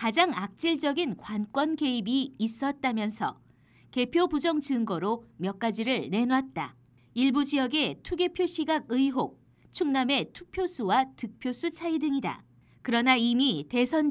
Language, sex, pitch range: Korean, female, 240-300 Hz